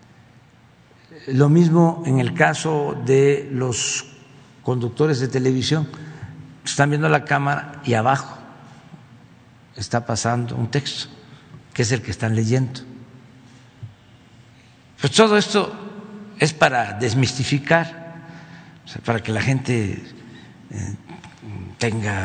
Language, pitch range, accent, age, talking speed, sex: Spanish, 110-150 Hz, Mexican, 60-79, 100 wpm, male